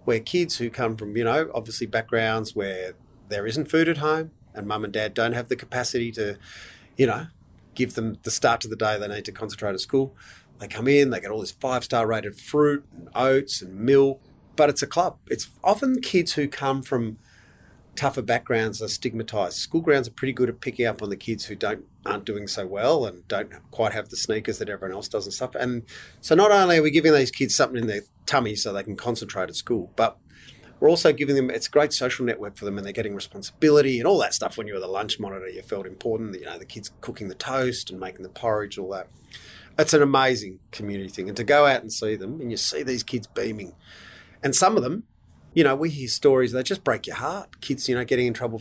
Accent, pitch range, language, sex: Australian, 105-135 Hz, English, male